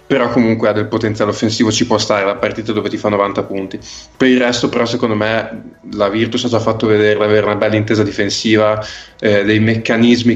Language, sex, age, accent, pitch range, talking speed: Italian, male, 20-39, native, 110-120 Hz, 210 wpm